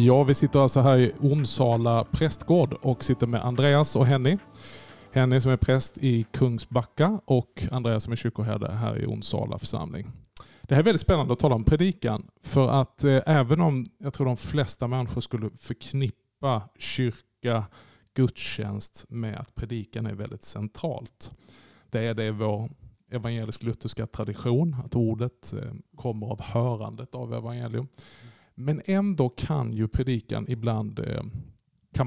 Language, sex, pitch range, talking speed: Swedish, male, 115-135 Hz, 150 wpm